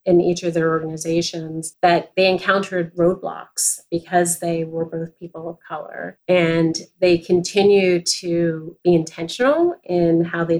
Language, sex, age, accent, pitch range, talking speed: English, female, 30-49, American, 165-185 Hz, 140 wpm